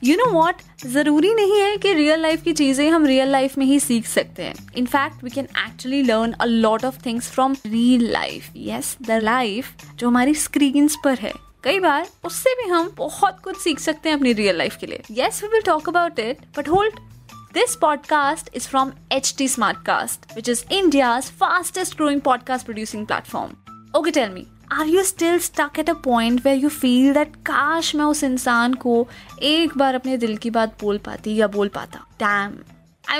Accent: native